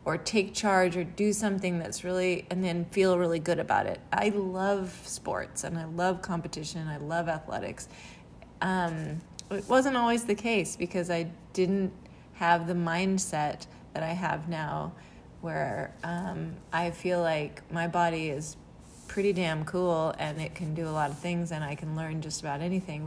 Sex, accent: female, American